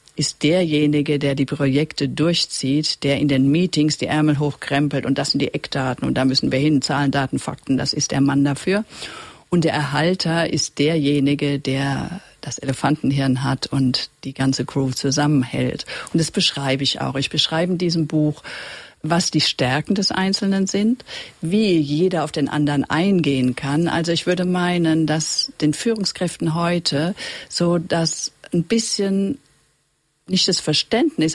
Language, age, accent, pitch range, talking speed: German, 50-69, German, 145-180 Hz, 160 wpm